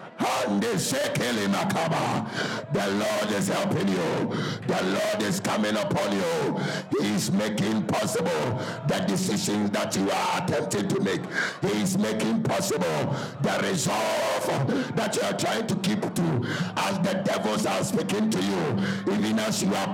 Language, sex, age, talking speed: English, male, 60-79, 145 wpm